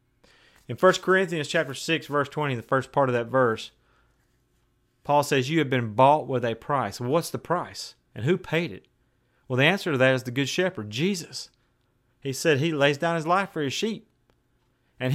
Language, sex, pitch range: English, male, 125-180 Hz